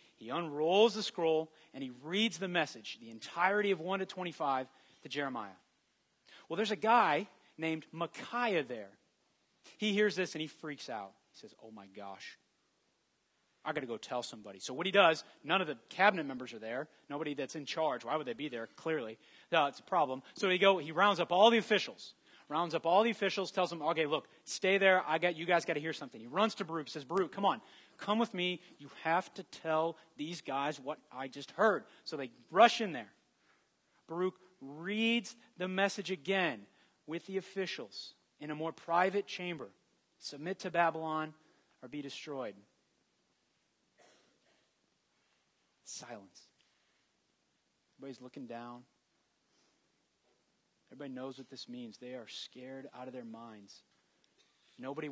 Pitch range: 140-190 Hz